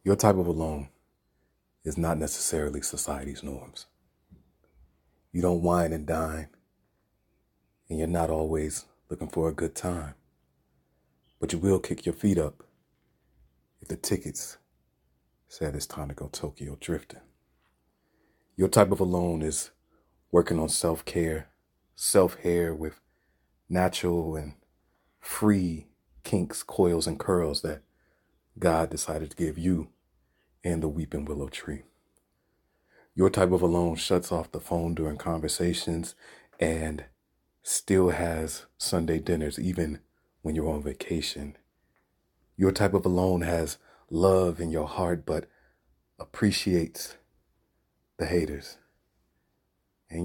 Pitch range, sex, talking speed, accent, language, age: 70-90 Hz, male, 120 wpm, American, English, 30-49